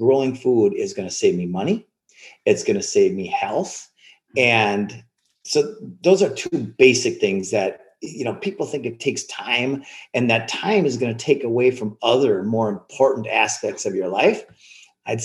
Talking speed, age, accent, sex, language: 180 wpm, 40-59, American, male, English